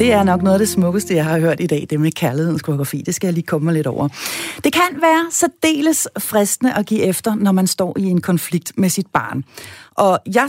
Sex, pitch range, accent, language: female, 165-245 Hz, native, Danish